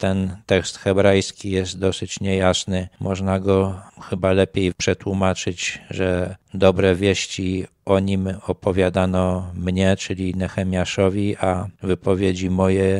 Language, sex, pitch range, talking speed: Polish, male, 90-95 Hz, 105 wpm